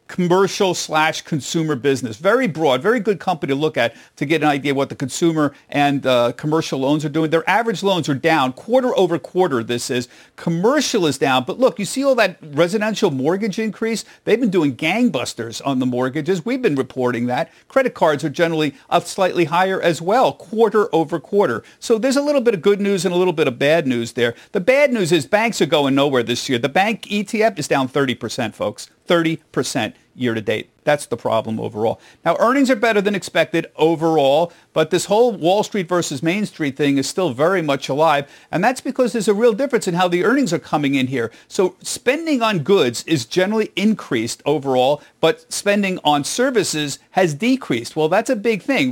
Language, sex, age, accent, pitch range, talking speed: English, male, 50-69, American, 145-215 Hz, 205 wpm